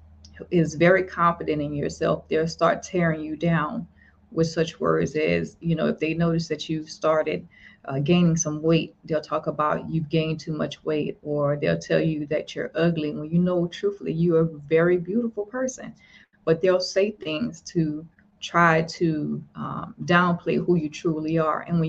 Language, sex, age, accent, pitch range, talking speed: English, female, 30-49, American, 155-175 Hz, 180 wpm